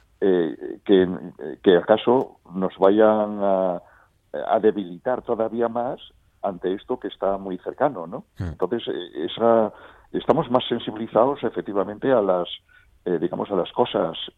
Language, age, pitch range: Spanish, 60-79, 95-115 Hz